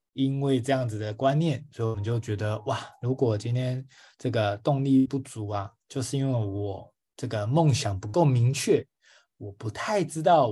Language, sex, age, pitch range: Chinese, male, 20-39, 110-140 Hz